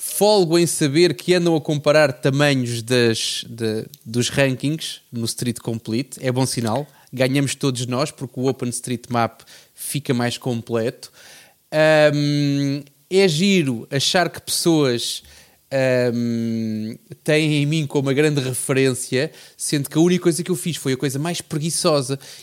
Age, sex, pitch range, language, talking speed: 20-39, male, 125-150 Hz, Portuguese, 150 wpm